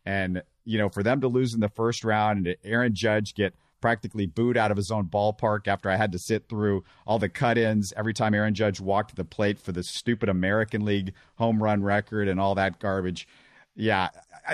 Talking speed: 215 wpm